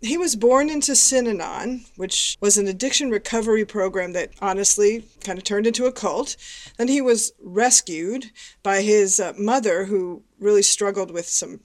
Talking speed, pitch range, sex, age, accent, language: 160 wpm, 195-230 Hz, female, 40-59, American, English